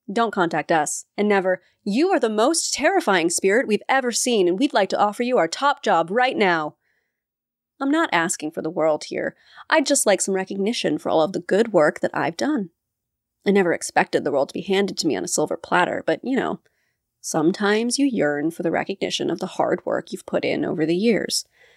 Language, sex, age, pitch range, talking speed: English, female, 30-49, 175-235 Hz, 220 wpm